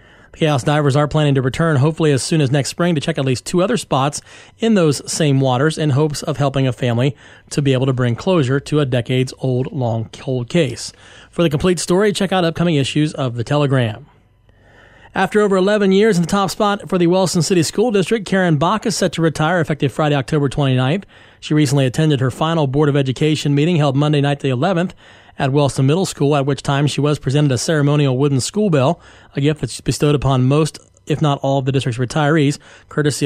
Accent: American